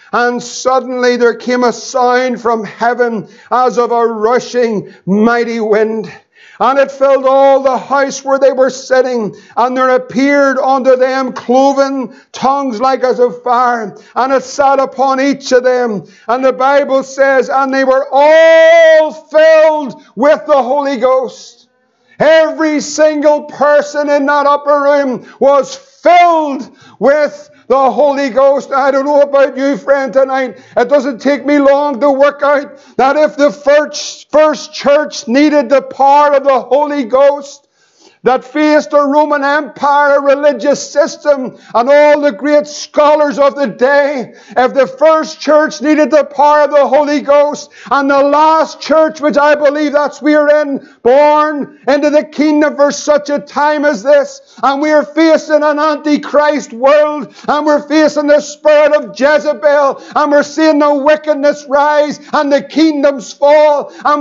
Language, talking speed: English, 155 wpm